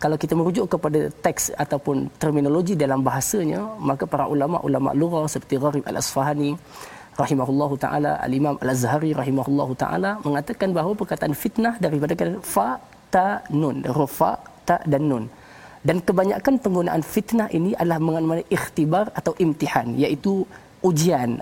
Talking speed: 135 wpm